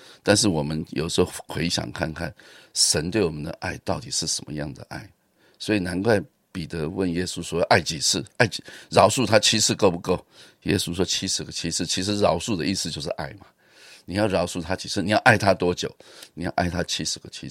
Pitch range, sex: 80-100 Hz, male